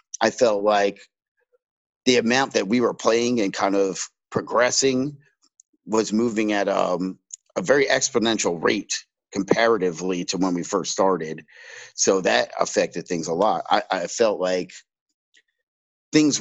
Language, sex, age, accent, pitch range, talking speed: English, male, 50-69, American, 95-125 Hz, 140 wpm